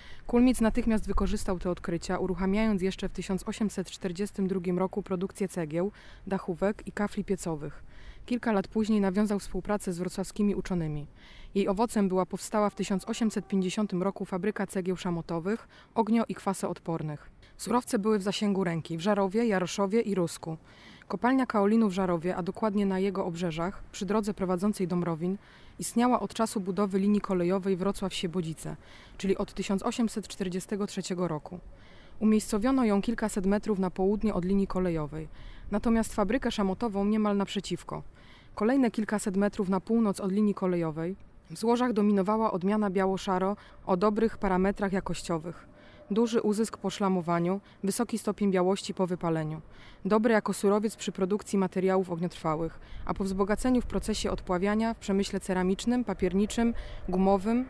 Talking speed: 135 wpm